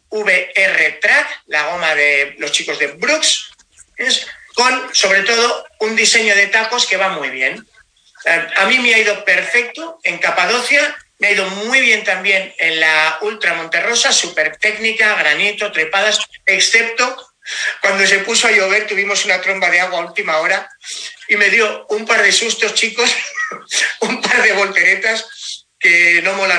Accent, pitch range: Spanish, 180-235 Hz